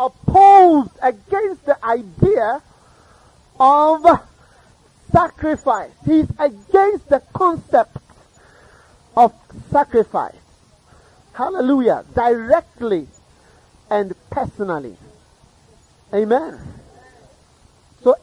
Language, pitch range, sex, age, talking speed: English, 200-285 Hz, male, 40-59, 60 wpm